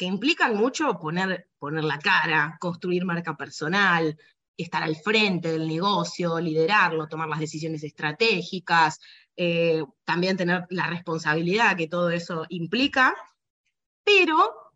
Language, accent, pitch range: Spanish, Argentinian, 170-230 Hz